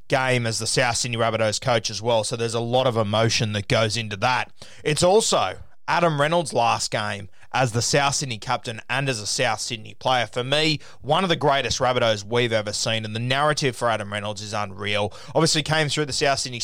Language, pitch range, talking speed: English, 115-140 Hz, 220 wpm